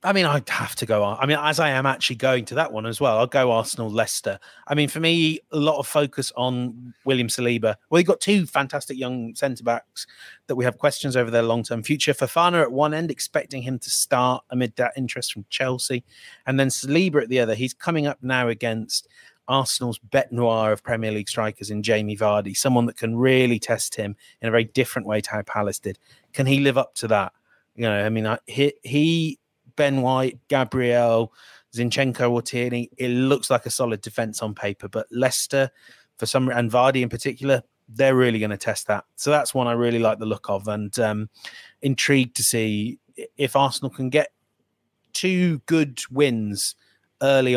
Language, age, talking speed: English, 30-49, 200 wpm